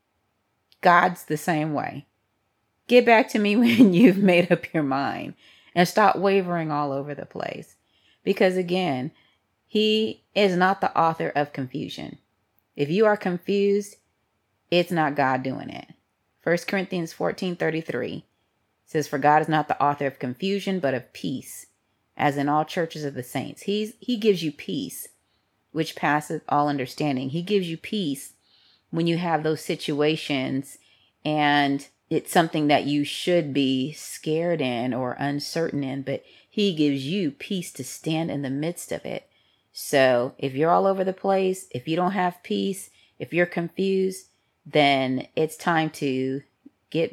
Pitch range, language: 135-175 Hz, English